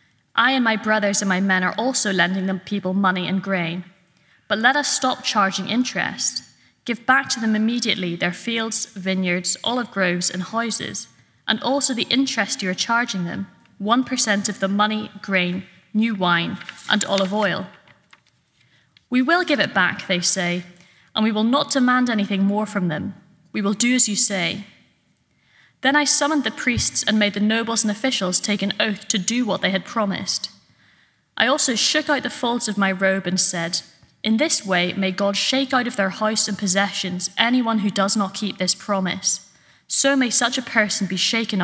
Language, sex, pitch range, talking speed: English, female, 190-235 Hz, 185 wpm